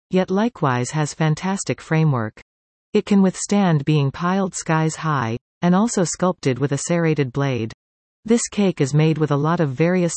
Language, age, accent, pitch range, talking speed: English, 40-59, American, 135-185 Hz, 165 wpm